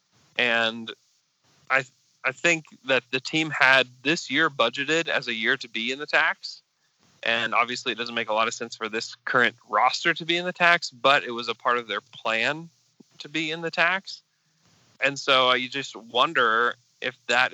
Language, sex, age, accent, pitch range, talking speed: English, male, 20-39, American, 125-160 Hz, 195 wpm